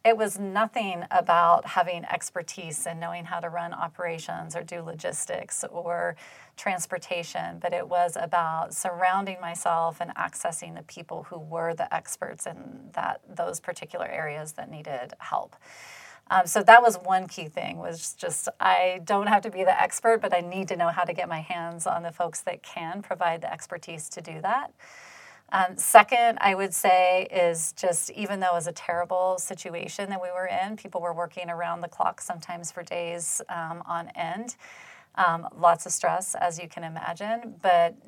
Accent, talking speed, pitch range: American, 180 wpm, 170-195 Hz